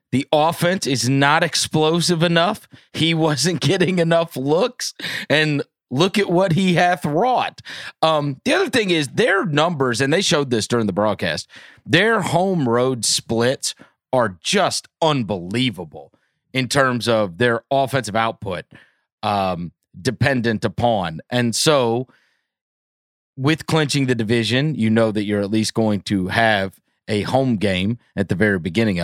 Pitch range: 110-165 Hz